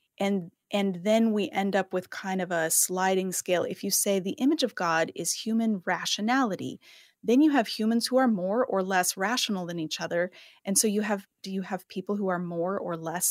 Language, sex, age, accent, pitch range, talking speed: English, female, 30-49, American, 180-225 Hz, 215 wpm